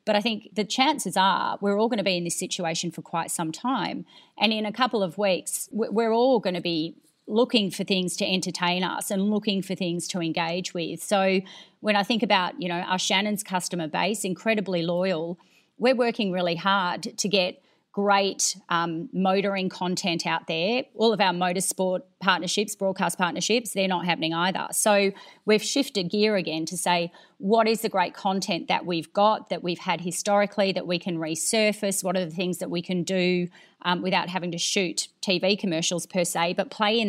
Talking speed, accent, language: 195 wpm, Australian, English